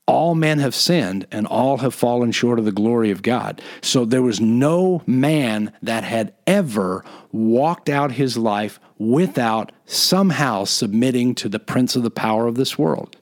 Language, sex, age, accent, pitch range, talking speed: English, male, 50-69, American, 120-155 Hz, 175 wpm